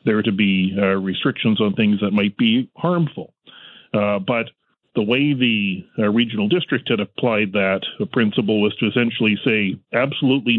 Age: 40-59